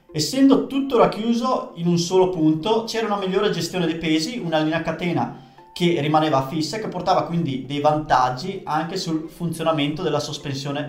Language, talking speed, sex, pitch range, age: Italian, 165 wpm, male, 135-175 Hz, 20-39